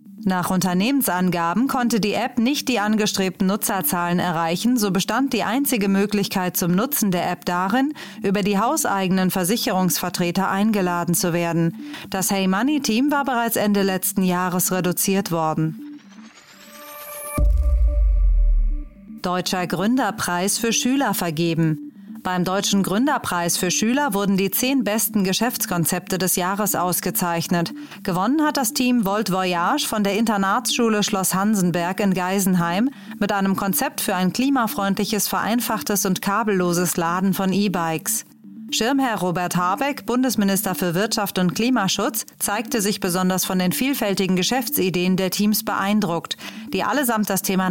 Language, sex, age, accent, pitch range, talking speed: German, female, 30-49, German, 180-225 Hz, 130 wpm